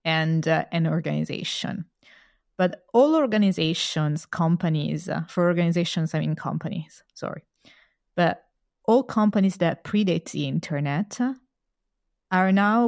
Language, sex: English, female